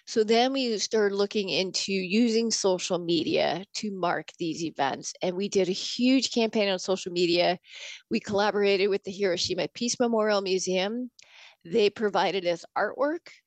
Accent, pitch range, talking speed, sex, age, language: American, 190-220 Hz, 150 wpm, female, 30-49, English